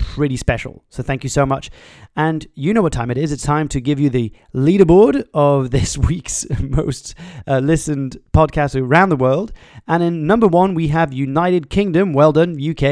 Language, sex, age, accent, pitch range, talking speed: English, male, 30-49, British, 135-180 Hz, 195 wpm